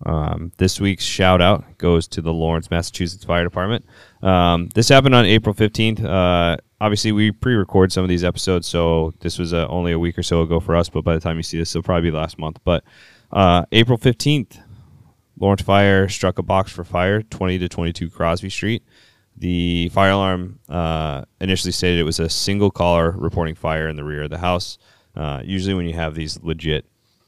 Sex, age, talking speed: male, 20-39, 200 wpm